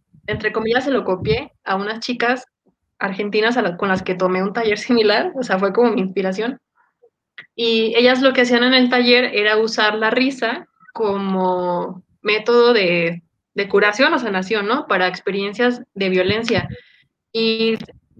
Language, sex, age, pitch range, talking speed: Spanish, female, 20-39, 195-240 Hz, 160 wpm